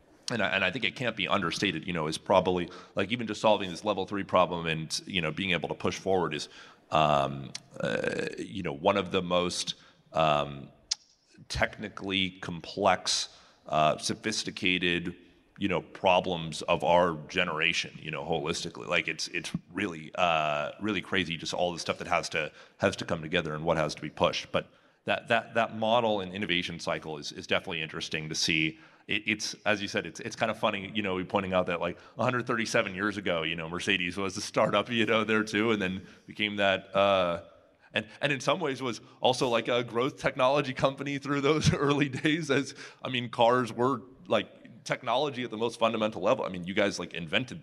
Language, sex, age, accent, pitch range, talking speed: English, male, 30-49, American, 90-115 Hz, 200 wpm